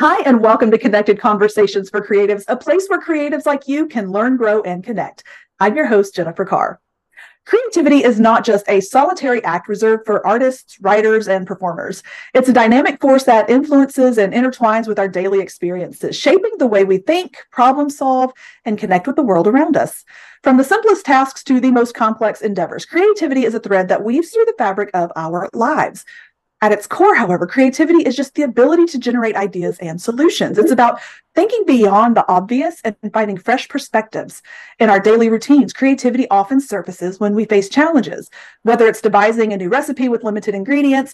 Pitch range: 205-275 Hz